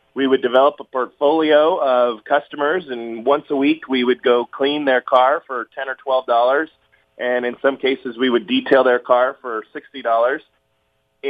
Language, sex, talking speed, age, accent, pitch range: English, male, 170 wpm, 30-49, American, 120-150 Hz